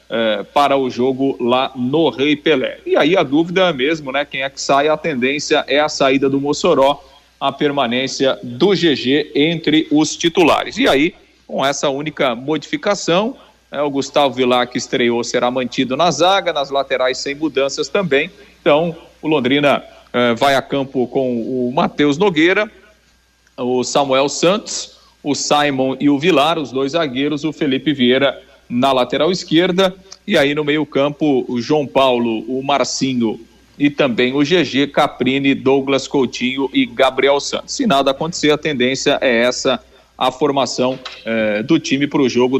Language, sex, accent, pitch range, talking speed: Portuguese, male, Brazilian, 130-160 Hz, 160 wpm